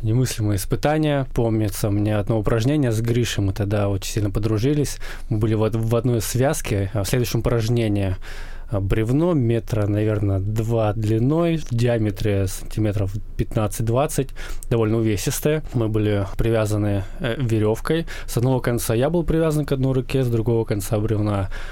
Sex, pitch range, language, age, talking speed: male, 105-125 Hz, Russian, 20-39, 140 wpm